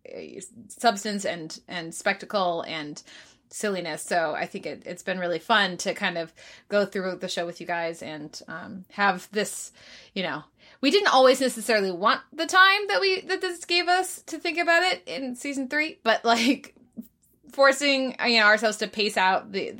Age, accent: 20-39, American